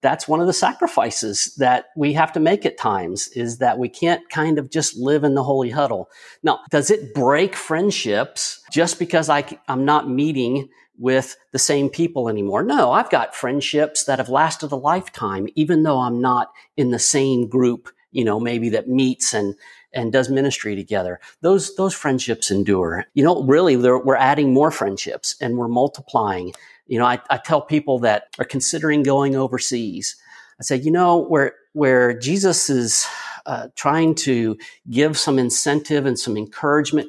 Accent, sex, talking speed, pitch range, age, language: American, male, 175 wpm, 125-155 Hz, 50-69, English